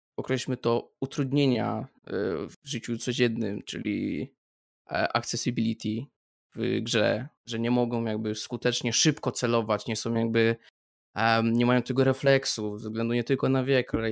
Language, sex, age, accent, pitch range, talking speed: Polish, male, 20-39, native, 115-135 Hz, 130 wpm